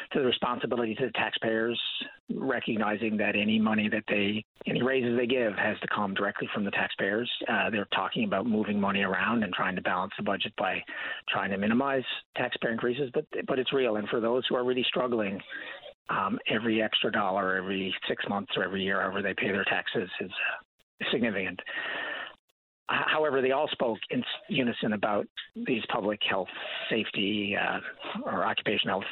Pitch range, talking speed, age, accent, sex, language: 100-120 Hz, 175 wpm, 40-59, American, male, English